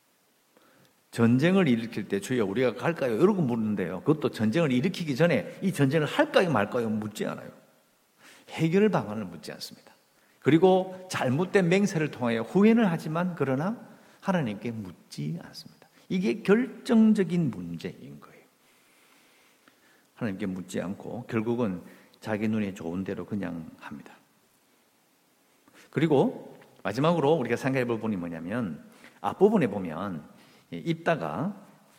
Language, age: English, 50-69